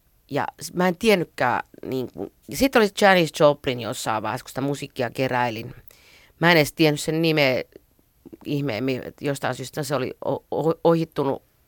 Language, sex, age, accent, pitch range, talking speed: Finnish, female, 30-49, native, 125-150 Hz, 140 wpm